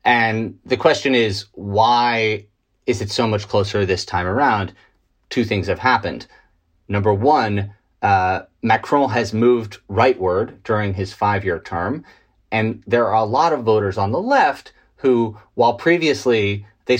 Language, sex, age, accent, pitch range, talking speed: English, male, 30-49, American, 110-140 Hz, 150 wpm